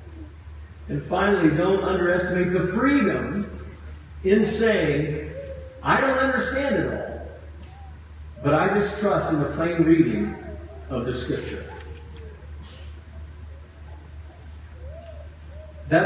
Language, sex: English, male